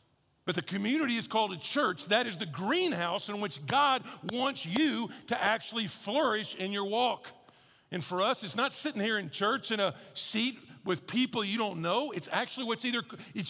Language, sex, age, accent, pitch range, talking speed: English, male, 50-69, American, 195-260 Hz, 195 wpm